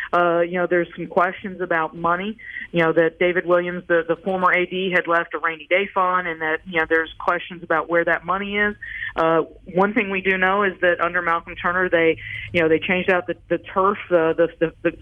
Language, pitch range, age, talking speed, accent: English, 170-195 Hz, 50-69, 230 wpm, American